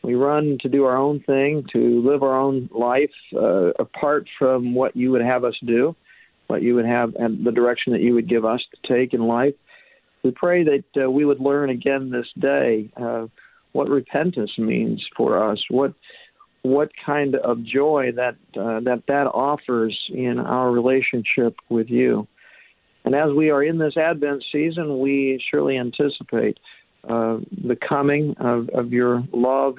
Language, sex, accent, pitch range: English, male, American, 120-140 Hz